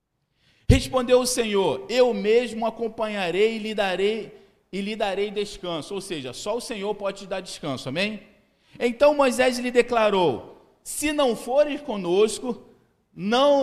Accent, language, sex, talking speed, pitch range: Brazilian, Portuguese, male, 130 wpm, 190-230 Hz